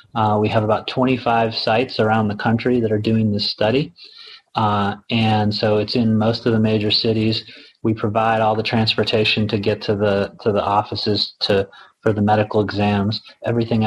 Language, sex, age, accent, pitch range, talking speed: English, male, 30-49, American, 105-115 Hz, 180 wpm